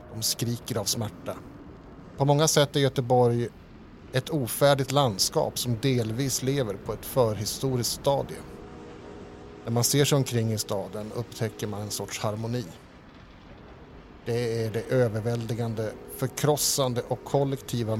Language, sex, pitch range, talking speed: Swedish, male, 110-130 Hz, 125 wpm